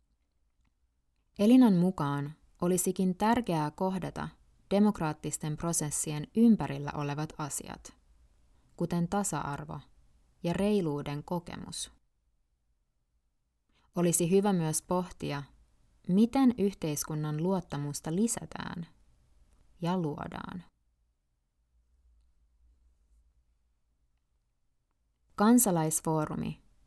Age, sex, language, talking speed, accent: 20-39, female, Finnish, 60 wpm, native